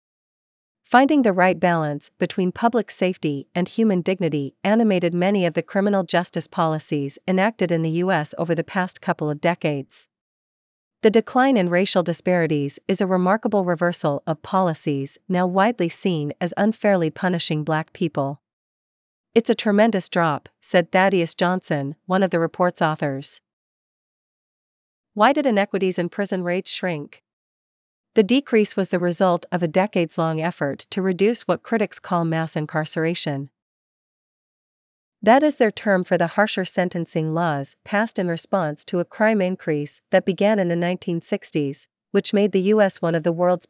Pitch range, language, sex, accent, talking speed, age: 160-195 Hz, English, female, American, 150 wpm, 40-59